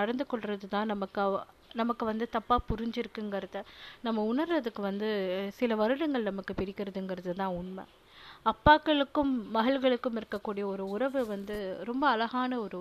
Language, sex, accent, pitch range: Tamil, female, native, 205-255 Hz